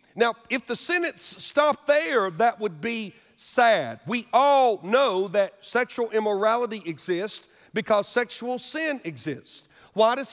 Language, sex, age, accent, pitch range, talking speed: English, male, 40-59, American, 200-265 Hz, 135 wpm